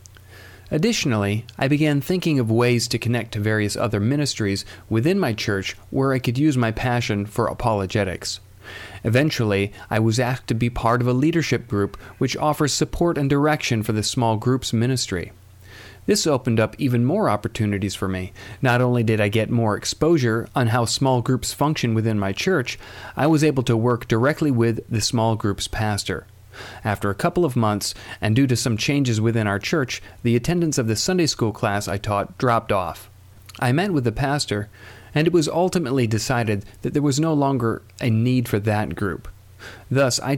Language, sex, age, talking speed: English, male, 40-59, 185 wpm